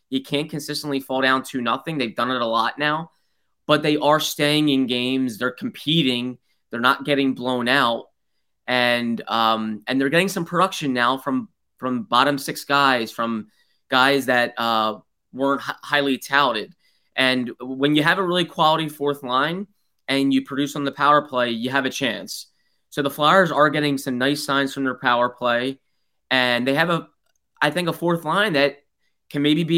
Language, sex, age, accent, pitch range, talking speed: English, male, 20-39, American, 130-150 Hz, 185 wpm